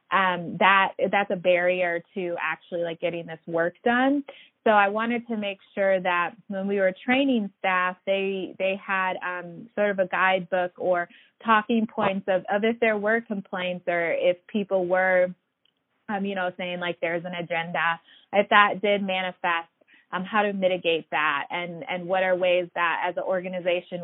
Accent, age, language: American, 20-39, English